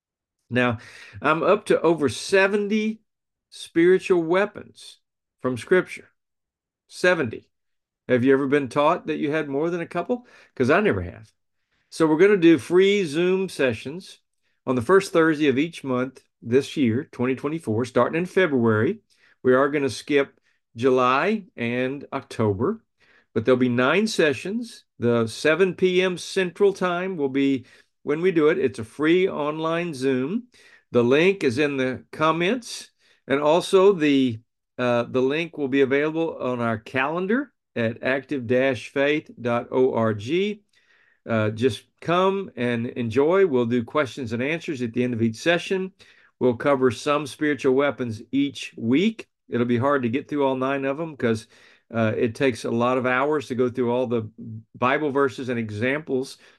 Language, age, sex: English, 50-69, male